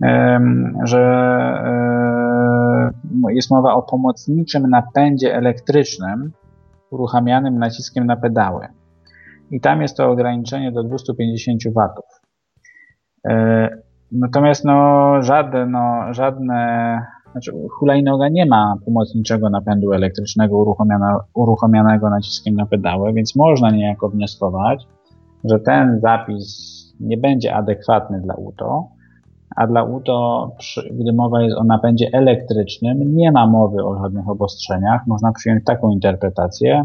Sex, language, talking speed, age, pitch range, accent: male, Polish, 105 wpm, 20-39, 105-125 Hz, native